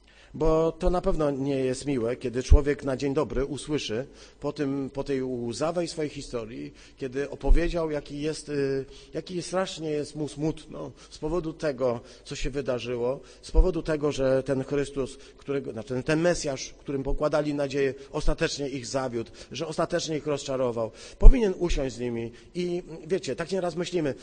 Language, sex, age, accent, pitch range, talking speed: Polish, male, 40-59, native, 130-160 Hz, 160 wpm